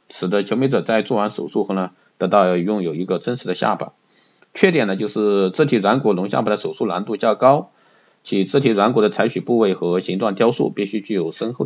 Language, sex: Chinese, male